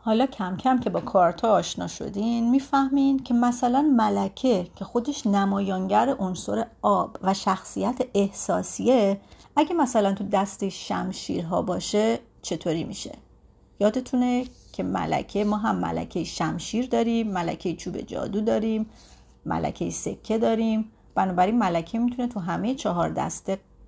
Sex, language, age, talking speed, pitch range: female, Persian, 30-49, 125 wpm, 180-240 Hz